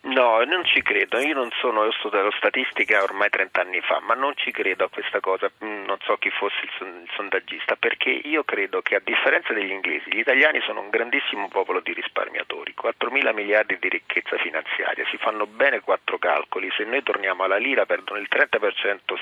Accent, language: native, Italian